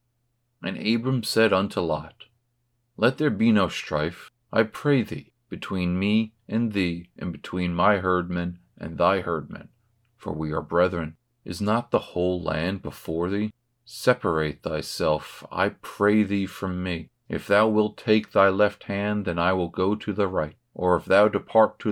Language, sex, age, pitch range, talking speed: English, male, 40-59, 85-110 Hz, 165 wpm